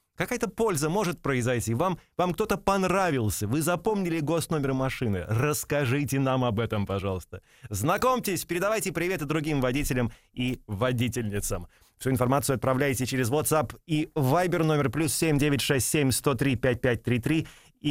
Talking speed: 115 wpm